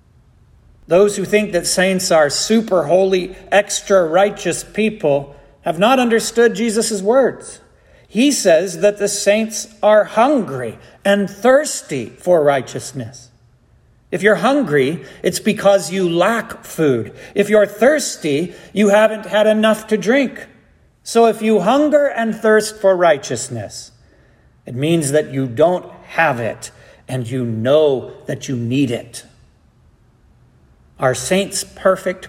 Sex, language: male, English